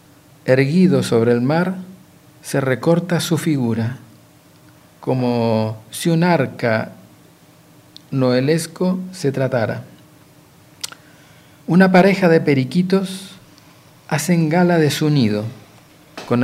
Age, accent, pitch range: 50-69, Argentinian, 130-155 Hz